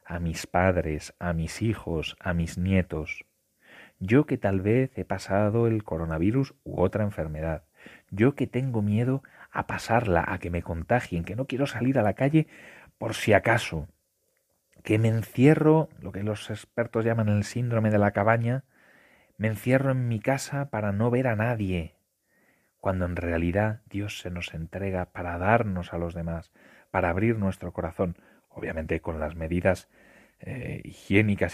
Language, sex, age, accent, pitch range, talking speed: Spanish, male, 30-49, Spanish, 85-115 Hz, 160 wpm